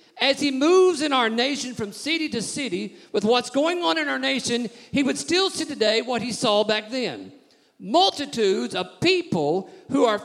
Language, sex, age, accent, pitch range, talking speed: English, male, 50-69, American, 220-310 Hz, 185 wpm